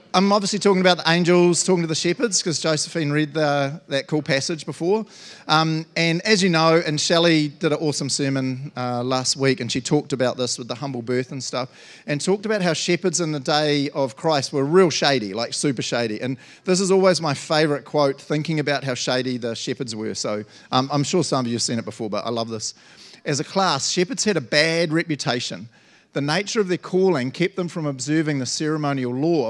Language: English